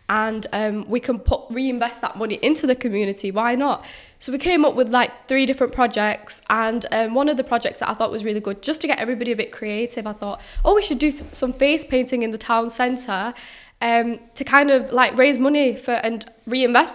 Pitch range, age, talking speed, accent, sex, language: 225-260 Hz, 10-29, 225 wpm, British, female, English